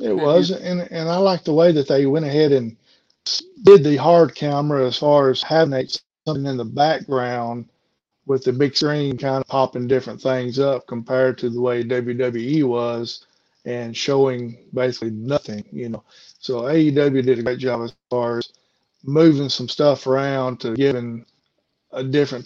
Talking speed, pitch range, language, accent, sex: 170 wpm, 120-135 Hz, English, American, male